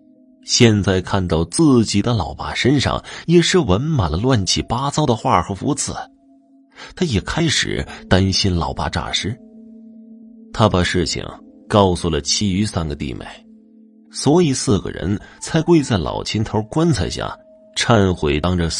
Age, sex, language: 30-49, male, Chinese